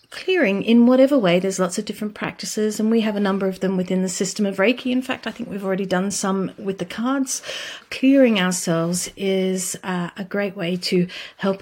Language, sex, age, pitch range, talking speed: English, female, 40-59, 185-230 Hz, 210 wpm